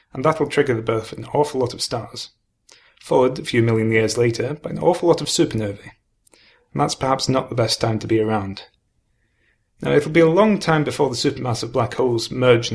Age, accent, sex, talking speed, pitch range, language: 30-49, British, male, 220 wpm, 115-145 Hz, English